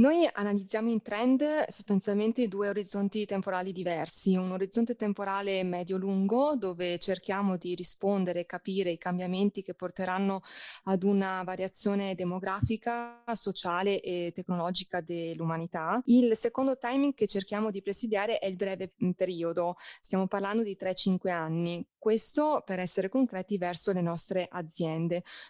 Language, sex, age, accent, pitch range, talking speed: Italian, female, 20-39, native, 185-215 Hz, 130 wpm